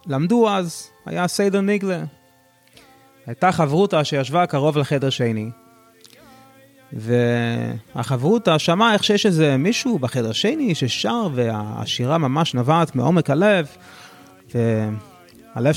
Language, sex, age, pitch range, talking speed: Hebrew, male, 20-39, 125-175 Hz, 100 wpm